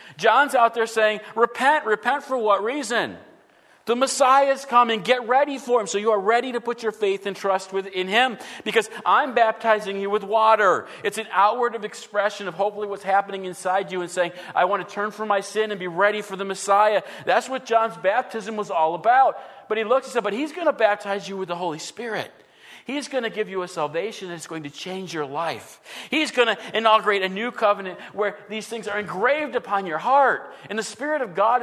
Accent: American